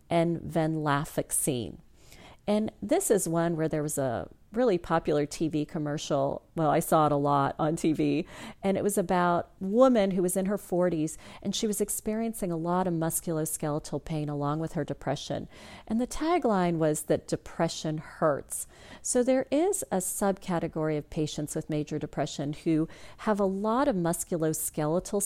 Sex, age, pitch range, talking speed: female, 40-59, 155-195 Hz, 165 wpm